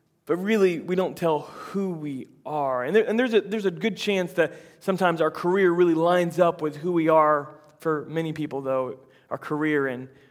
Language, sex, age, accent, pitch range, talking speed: English, male, 20-39, American, 145-170 Hz, 205 wpm